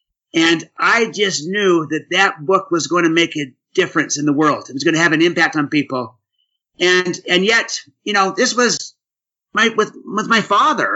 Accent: American